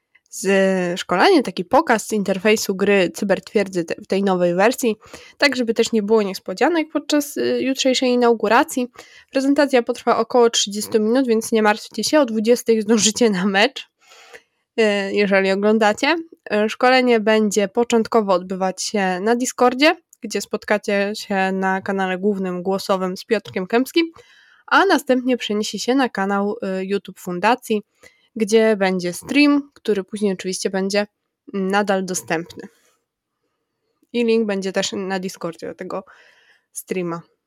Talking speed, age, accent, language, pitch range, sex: 125 wpm, 20-39, native, Polish, 190-240 Hz, female